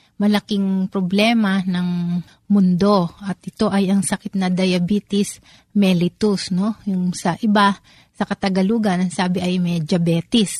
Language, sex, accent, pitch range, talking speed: Filipino, female, native, 185-210 Hz, 130 wpm